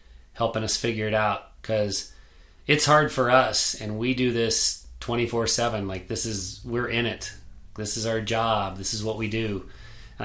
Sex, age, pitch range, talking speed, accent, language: male, 30-49, 105-130 Hz, 195 wpm, American, English